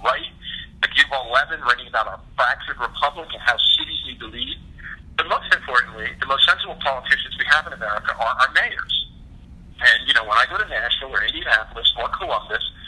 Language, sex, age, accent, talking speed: English, male, 50-69, American, 180 wpm